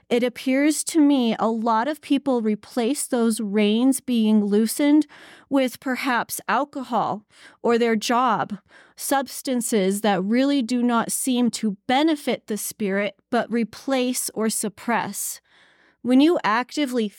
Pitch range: 205-250 Hz